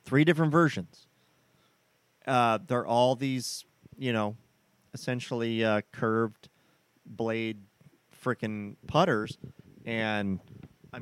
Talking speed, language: 95 wpm, English